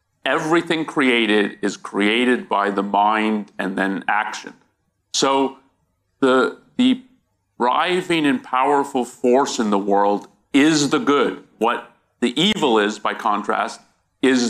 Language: English